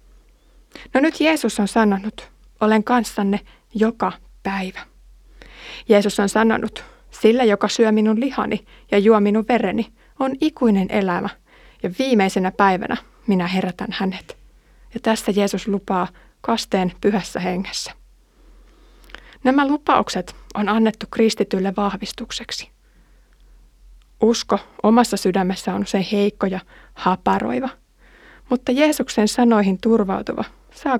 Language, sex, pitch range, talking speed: Finnish, female, 195-230 Hz, 110 wpm